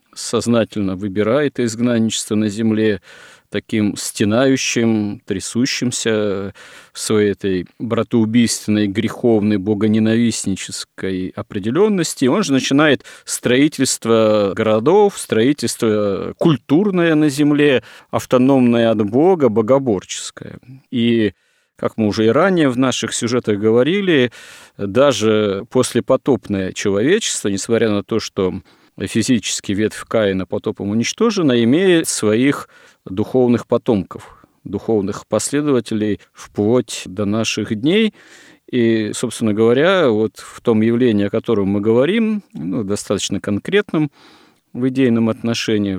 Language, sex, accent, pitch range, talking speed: Russian, male, native, 105-130 Hz, 100 wpm